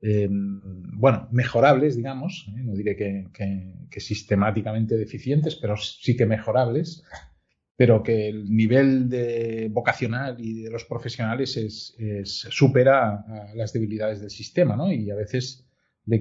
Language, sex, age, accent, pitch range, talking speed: English, male, 40-59, Spanish, 105-120 Hz, 140 wpm